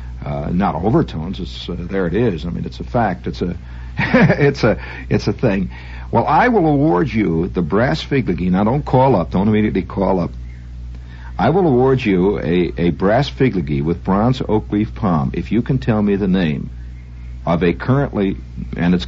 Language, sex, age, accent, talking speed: English, male, 60-79, American, 190 wpm